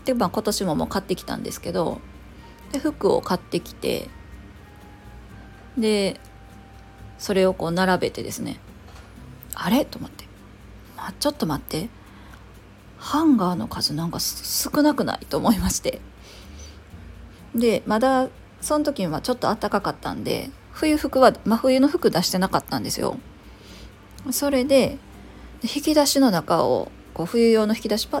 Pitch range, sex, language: 180-290 Hz, female, Japanese